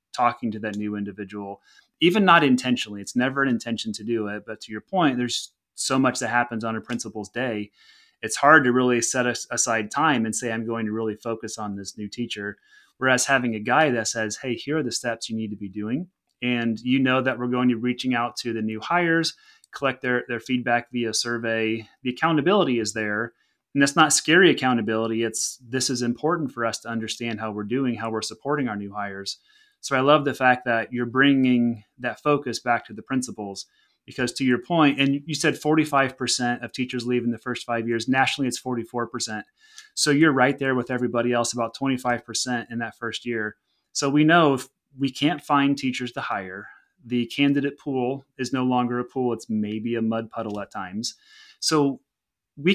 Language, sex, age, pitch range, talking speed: English, male, 30-49, 115-135 Hz, 205 wpm